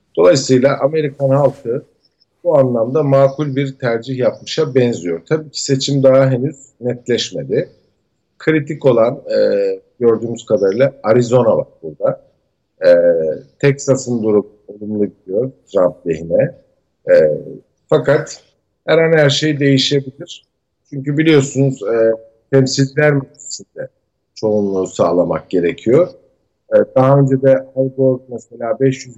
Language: Turkish